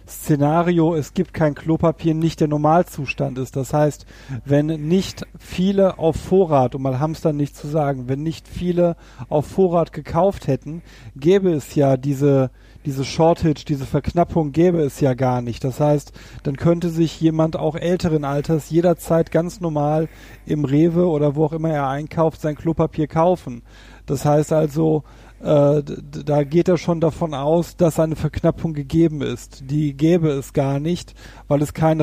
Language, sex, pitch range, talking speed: German, male, 140-170 Hz, 165 wpm